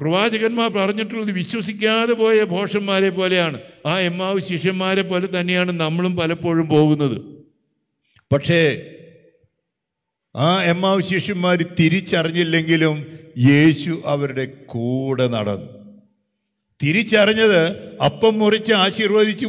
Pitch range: 140-180 Hz